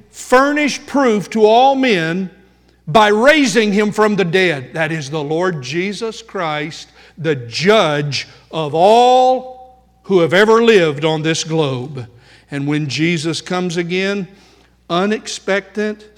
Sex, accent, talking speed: male, American, 125 wpm